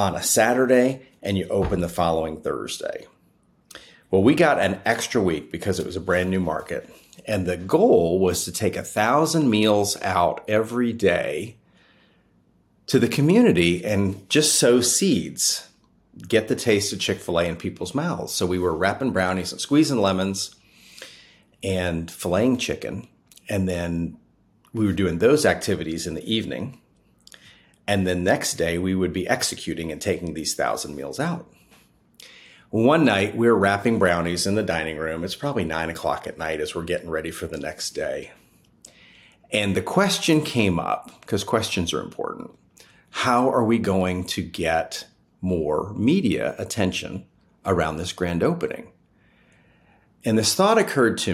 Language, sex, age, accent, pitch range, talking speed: English, male, 40-59, American, 85-110 Hz, 160 wpm